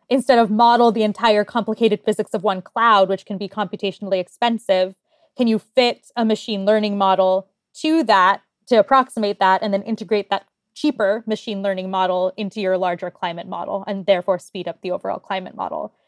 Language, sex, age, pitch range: English, female, 20-39, 190-220 Hz